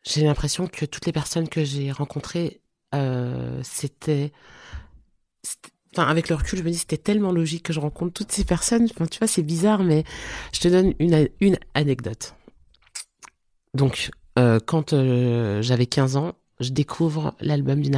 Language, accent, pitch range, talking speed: French, French, 135-160 Hz, 175 wpm